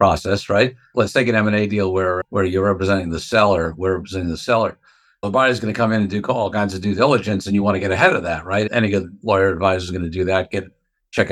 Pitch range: 100-135 Hz